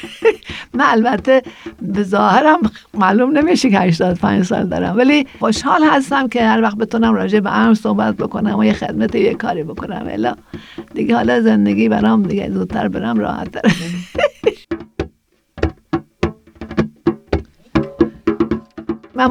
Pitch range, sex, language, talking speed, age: 210-255 Hz, female, Persian, 115 wpm, 60-79